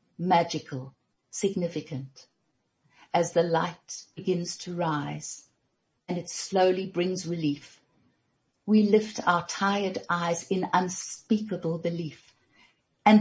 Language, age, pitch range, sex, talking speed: English, 60-79, 150-195 Hz, female, 100 wpm